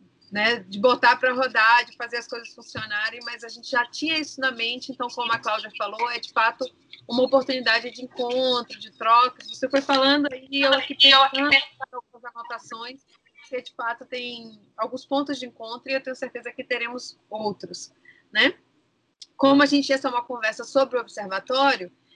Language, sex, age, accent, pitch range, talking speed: Portuguese, female, 20-39, Brazilian, 210-260 Hz, 185 wpm